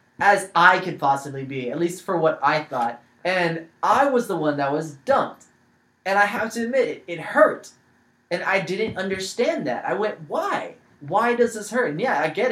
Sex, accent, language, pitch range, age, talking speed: male, American, English, 165-250 Hz, 20-39, 205 wpm